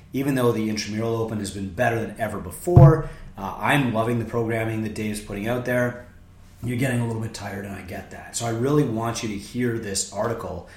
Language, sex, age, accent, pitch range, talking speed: English, male, 30-49, American, 90-115 Hz, 225 wpm